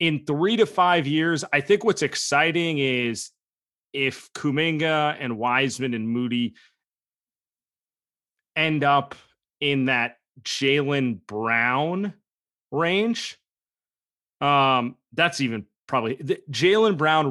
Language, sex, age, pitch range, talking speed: English, male, 30-49, 120-155 Hz, 105 wpm